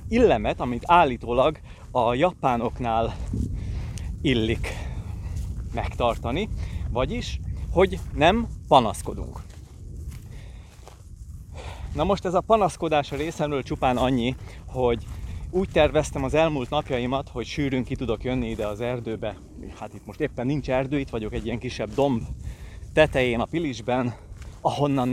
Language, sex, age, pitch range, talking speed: Hungarian, male, 30-49, 105-140 Hz, 120 wpm